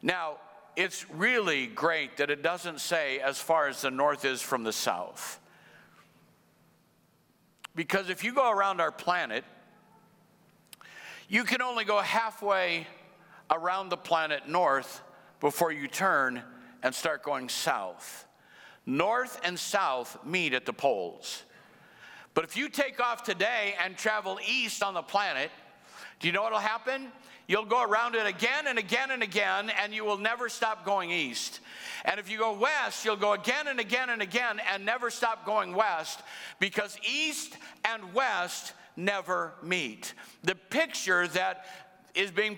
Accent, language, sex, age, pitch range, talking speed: American, English, male, 60-79, 185-235 Hz, 150 wpm